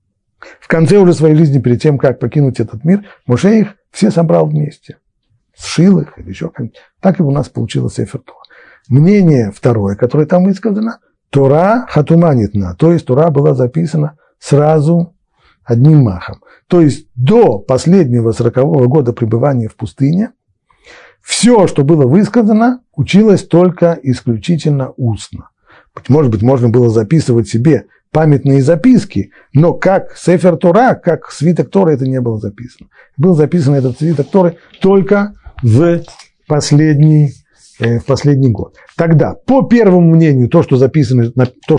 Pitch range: 125-170 Hz